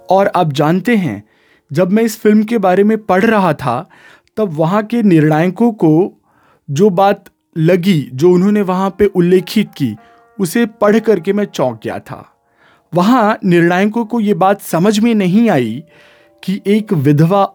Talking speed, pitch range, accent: 160 wpm, 155-215 Hz, native